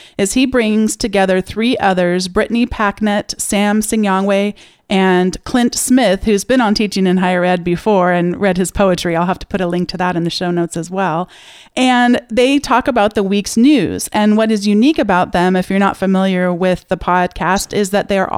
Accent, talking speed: American, 205 wpm